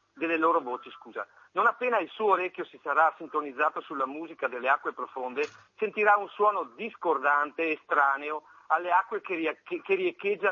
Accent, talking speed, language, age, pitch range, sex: native, 155 wpm, Italian, 50-69, 155-235 Hz, male